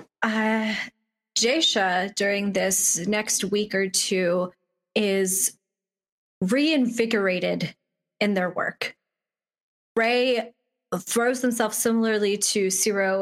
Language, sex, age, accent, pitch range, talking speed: English, female, 20-39, American, 185-225 Hz, 85 wpm